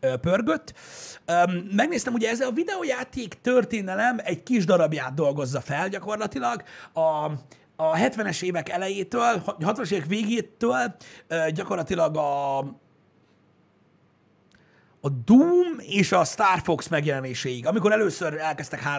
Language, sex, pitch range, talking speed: Hungarian, male, 140-205 Hz, 105 wpm